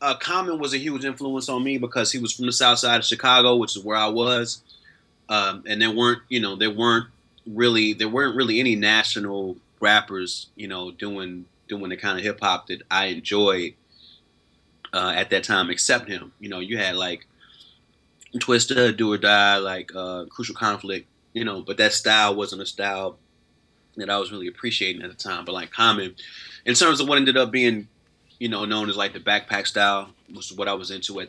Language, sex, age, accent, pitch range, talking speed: English, male, 30-49, American, 95-115 Hz, 205 wpm